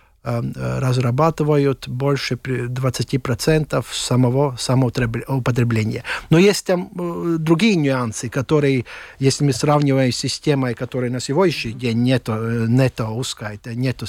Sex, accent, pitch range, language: male, native, 120-155 Hz, Russian